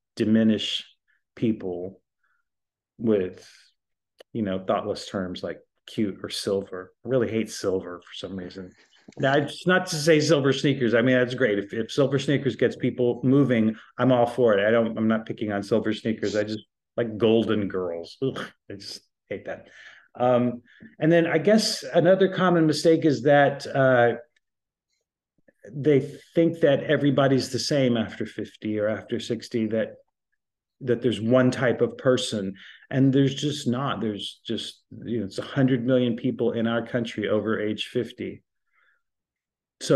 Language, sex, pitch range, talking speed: English, male, 110-135 Hz, 160 wpm